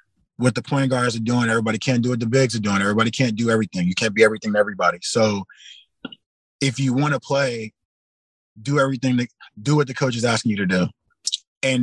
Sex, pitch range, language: male, 115-140 Hz, English